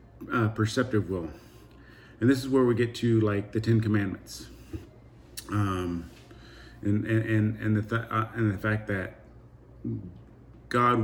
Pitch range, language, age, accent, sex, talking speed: 105-115 Hz, English, 30-49, American, male, 145 wpm